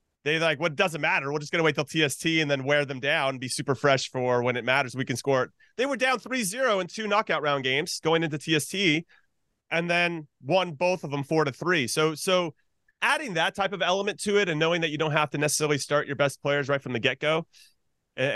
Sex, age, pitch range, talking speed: male, 30-49, 135-165 Hz, 255 wpm